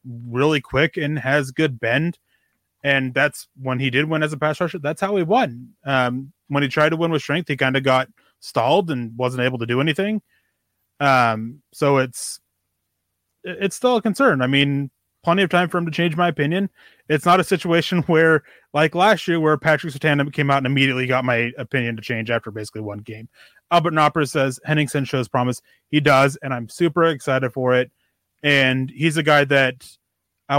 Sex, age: male, 20-39